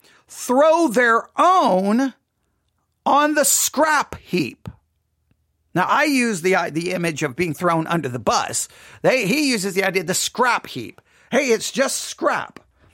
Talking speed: 150 wpm